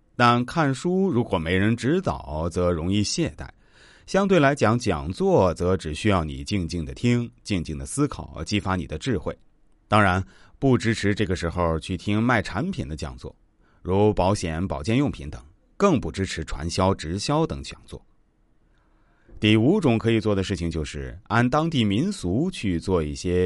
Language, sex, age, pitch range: Chinese, male, 30-49, 90-125 Hz